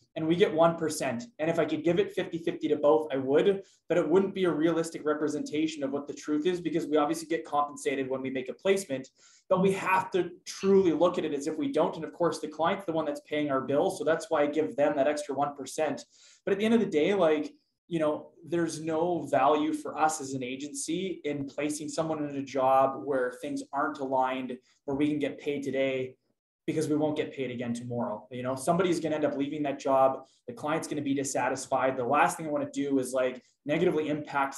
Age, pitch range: 20-39, 140-165 Hz